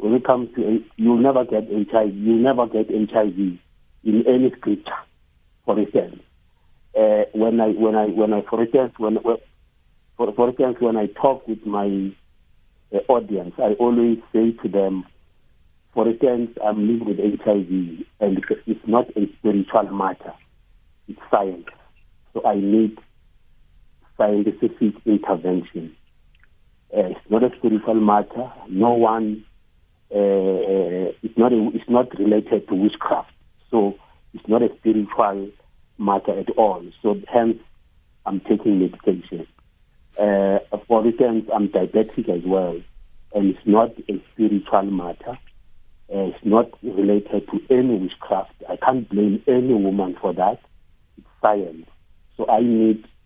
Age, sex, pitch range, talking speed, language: 50-69, male, 95-110 Hz, 140 wpm, English